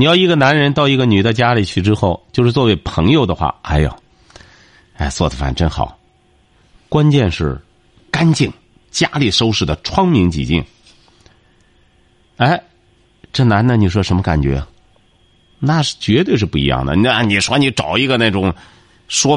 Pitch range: 85-125 Hz